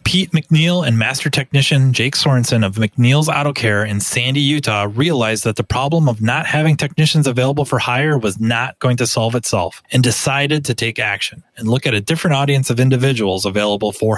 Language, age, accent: English, 20-39, American